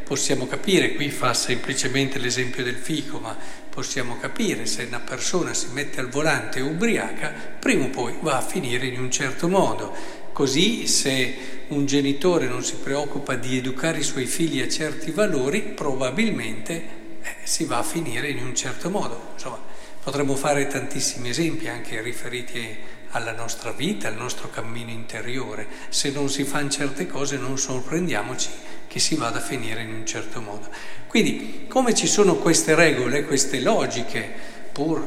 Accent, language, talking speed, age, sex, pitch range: native, Italian, 165 wpm, 50-69, male, 115-155 Hz